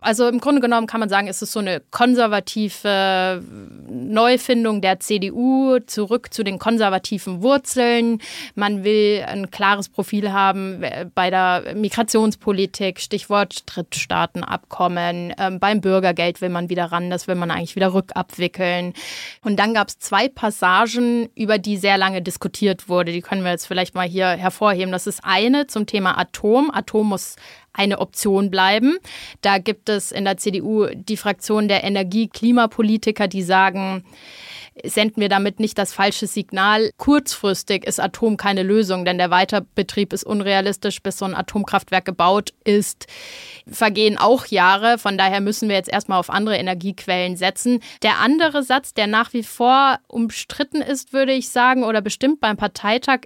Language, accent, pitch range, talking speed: German, German, 190-225 Hz, 155 wpm